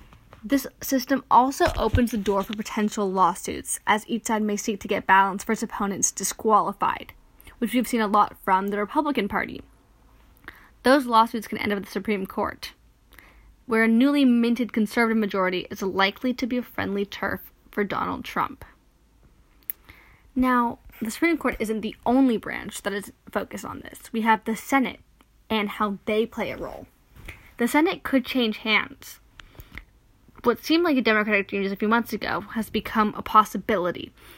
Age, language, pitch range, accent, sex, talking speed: 10-29, English, 205-245 Hz, American, female, 170 wpm